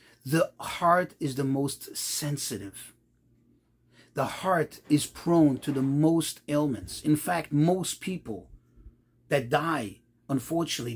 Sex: male